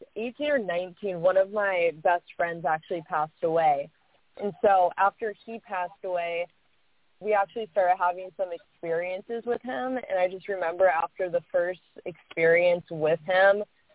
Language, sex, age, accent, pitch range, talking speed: English, female, 20-39, American, 165-200 Hz, 155 wpm